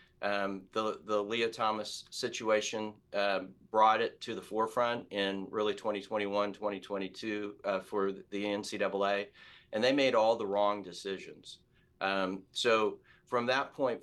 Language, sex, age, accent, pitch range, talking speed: English, male, 40-59, American, 100-115 Hz, 130 wpm